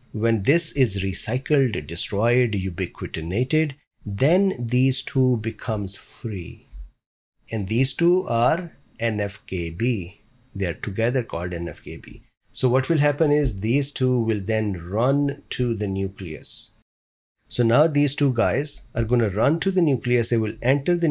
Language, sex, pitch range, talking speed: English, male, 110-135 Hz, 140 wpm